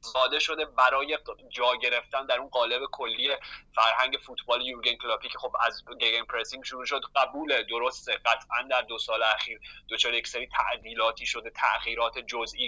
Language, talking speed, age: Persian, 150 wpm, 20-39